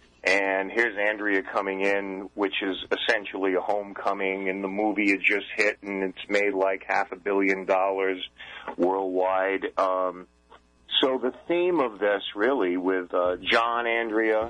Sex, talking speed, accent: male, 150 wpm, American